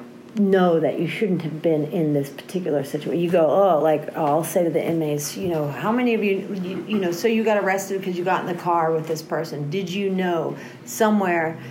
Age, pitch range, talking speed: 50-69, 150-190 Hz, 230 wpm